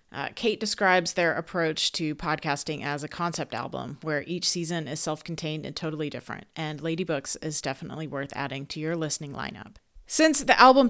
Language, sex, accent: English, female, American